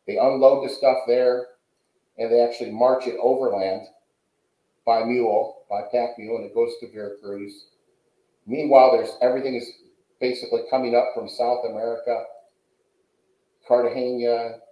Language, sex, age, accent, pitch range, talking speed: English, male, 50-69, American, 120-160 Hz, 130 wpm